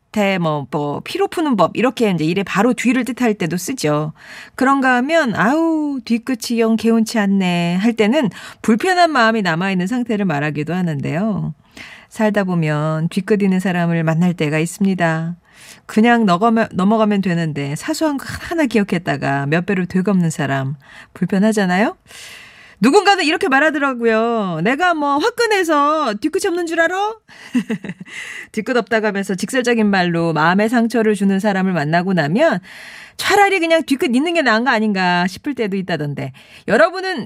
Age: 40-59